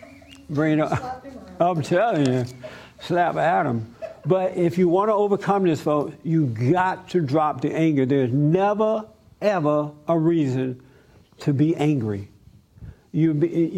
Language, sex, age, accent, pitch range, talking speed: English, male, 60-79, American, 140-175 Hz, 125 wpm